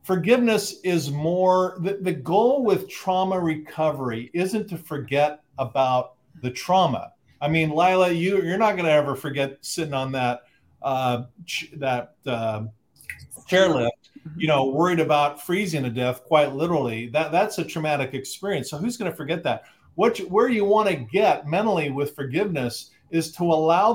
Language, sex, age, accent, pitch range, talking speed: English, male, 50-69, American, 140-180 Hz, 165 wpm